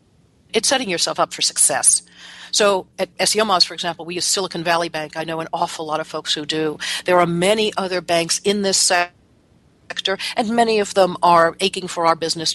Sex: female